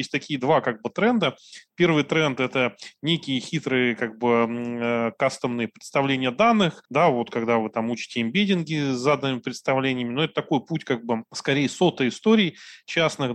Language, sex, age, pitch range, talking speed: Russian, male, 20-39, 125-155 Hz, 165 wpm